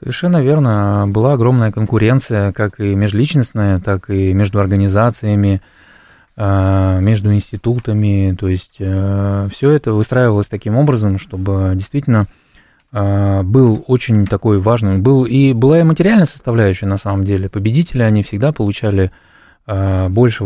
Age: 20-39